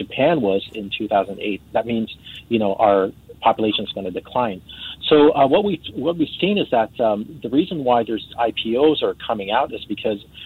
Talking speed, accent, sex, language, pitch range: 190 wpm, American, male, English, 105-130 Hz